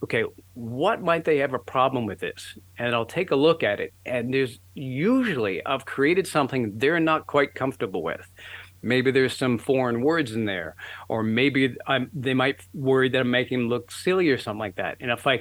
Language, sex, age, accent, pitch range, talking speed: English, male, 50-69, American, 115-145 Hz, 205 wpm